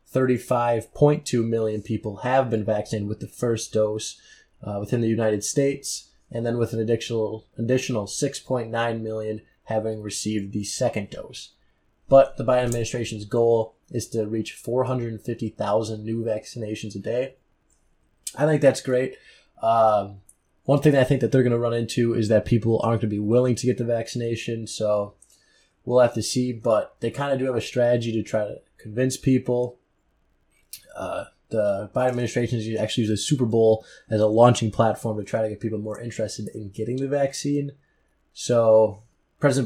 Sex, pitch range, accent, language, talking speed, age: male, 110-125 Hz, American, English, 170 wpm, 20-39